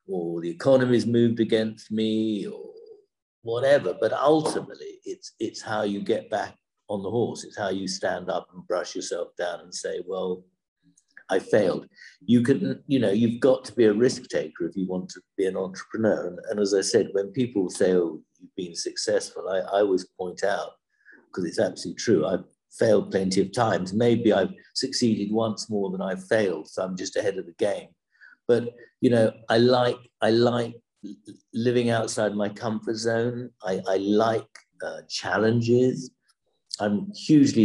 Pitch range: 95-125 Hz